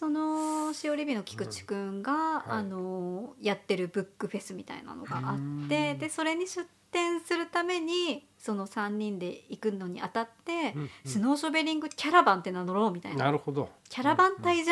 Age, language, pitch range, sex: 40-59, Japanese, 185-285 Hz, male